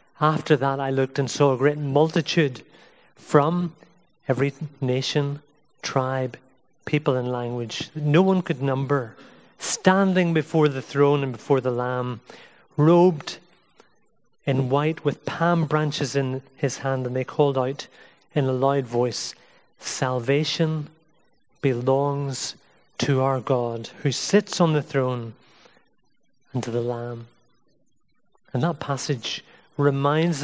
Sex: male